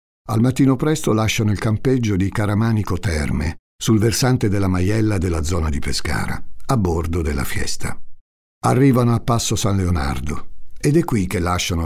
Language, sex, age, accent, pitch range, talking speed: Italian, male, 50-69, native, 85-115 Hz, 155 wpm